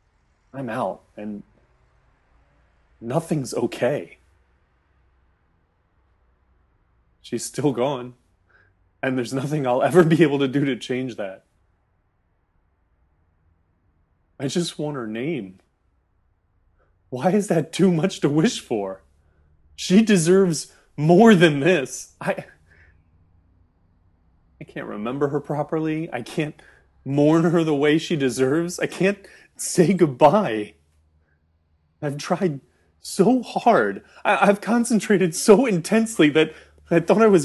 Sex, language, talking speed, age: male, English, 110 wpm, 30-49